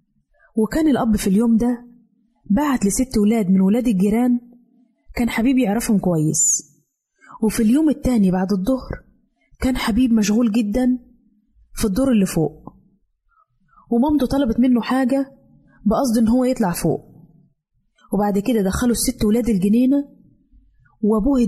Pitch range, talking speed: 205-255 Hz, 125 wpm